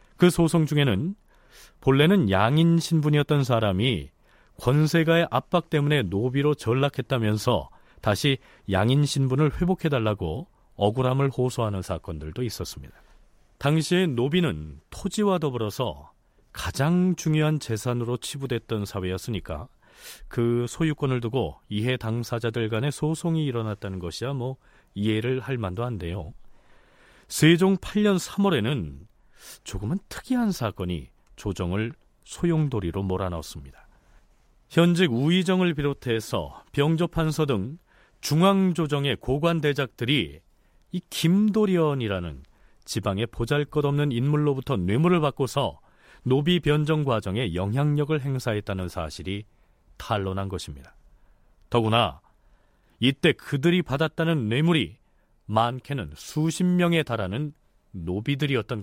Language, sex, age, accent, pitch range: Korean, male, 40-59, native, 105-155 Hz